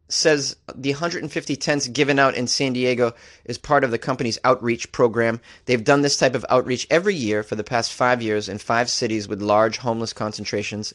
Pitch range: 110-165 Hz